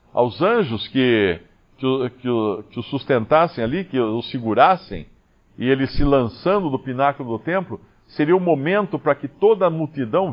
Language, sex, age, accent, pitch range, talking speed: Portuguese, male, 50-69, Brazilian, 105-150 Hz, 175 wpm